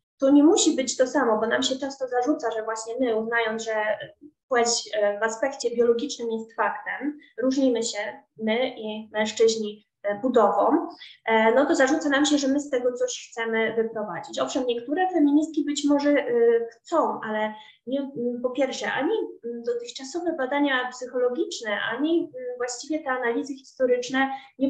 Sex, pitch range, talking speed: female, 220-275 Hz, 145 wpm